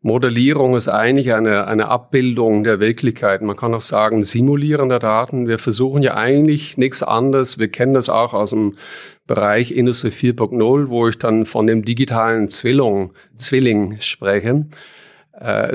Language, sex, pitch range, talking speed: German, male, 110-135 Hz, 150 wpm